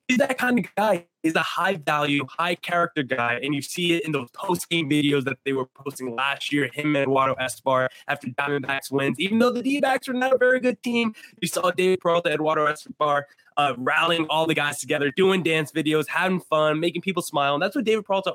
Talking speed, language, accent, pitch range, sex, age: 220 wpm, English, American, 130-175 Hz, male, 20-39